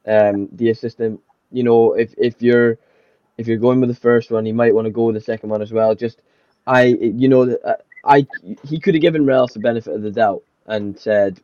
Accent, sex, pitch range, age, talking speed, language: British, male, 105-120 Hz, 10-29, 230 wpm, English